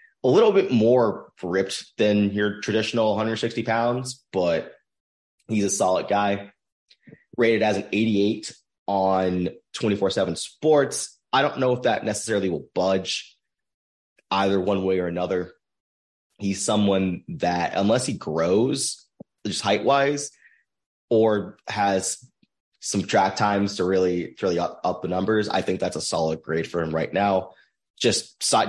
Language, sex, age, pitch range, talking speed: English, male, 30-49, 85-105 Hz, 140 wpm